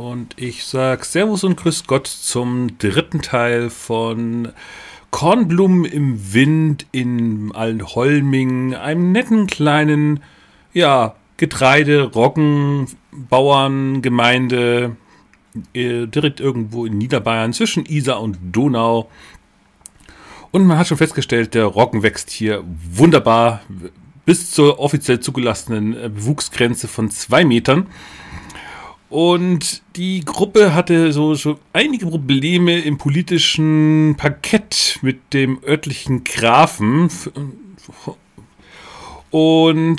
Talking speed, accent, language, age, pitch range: 95 wpm, German, German, 40-59, 120-155 Hz